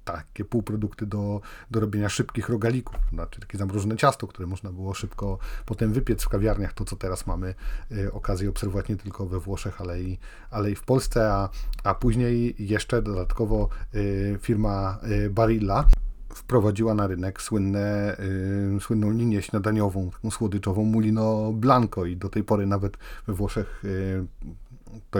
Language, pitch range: Polish, 95-110 Hz